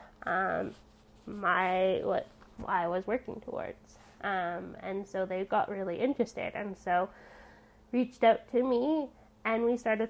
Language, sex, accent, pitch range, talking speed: English, female, American, 200-245 Hz, 135 wpm